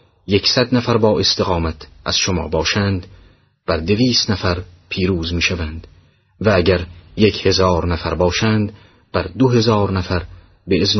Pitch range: 90-110 Hz